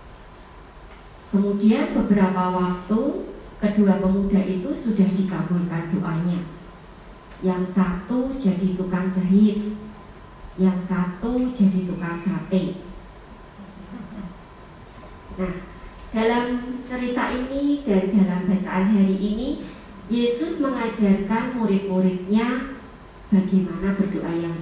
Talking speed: 85 wpm